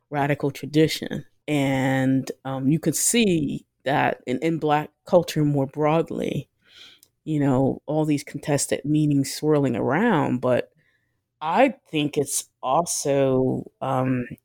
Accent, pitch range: American, 130-155 Hz